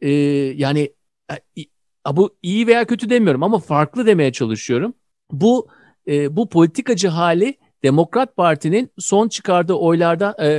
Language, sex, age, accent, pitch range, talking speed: Turkish, male, 50-69, native, 145-195 Hz, 110 wpm